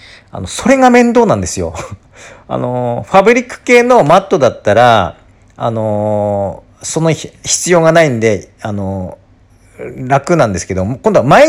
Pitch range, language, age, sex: 95-135 Hz, Japanese, 40-59, male